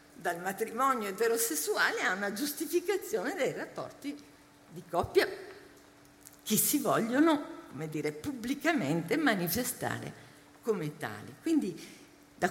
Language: Italian